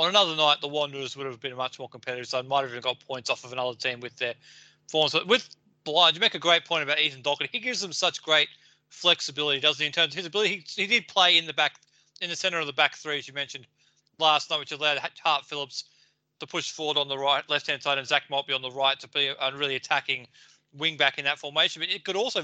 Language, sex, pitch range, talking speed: English, male, 145-175 Hz, 265 wpm